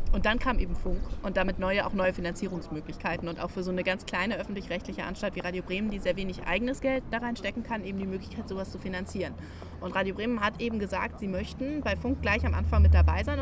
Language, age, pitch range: German, 20-39, 170-240 Hz